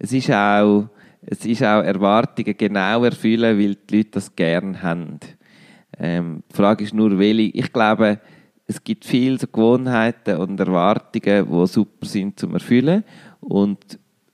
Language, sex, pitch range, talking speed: German, male, 95-120 Hz, 150 wpm